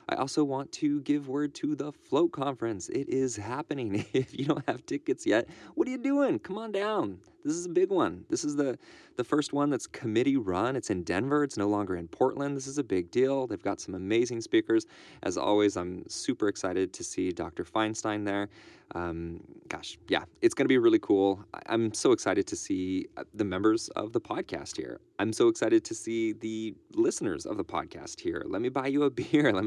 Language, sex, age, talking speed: English, male, 20-39, 215 wpm